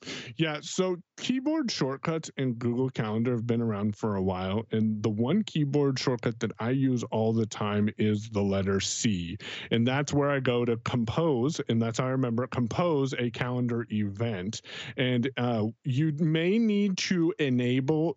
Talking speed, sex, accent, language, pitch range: 170 wpm, male, American, English, 115-160 Hz